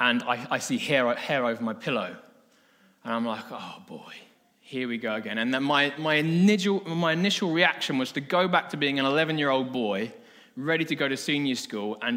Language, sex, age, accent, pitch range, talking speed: English, male, 20-39, British, 125-175 Hz, 205 wpm